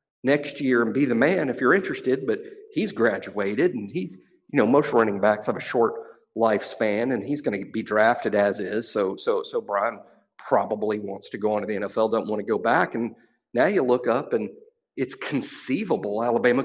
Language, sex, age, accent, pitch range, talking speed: English, male, 50-69, American, 115-140 Hz, 205 wpm